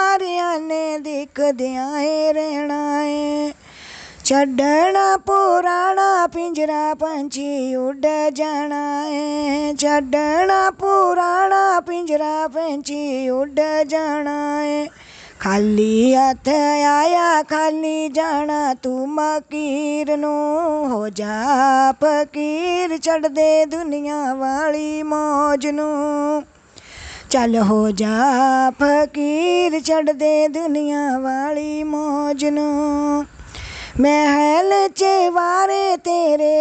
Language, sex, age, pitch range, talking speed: Hindi, female, 20-39, 290-320 Hz, 70 wpm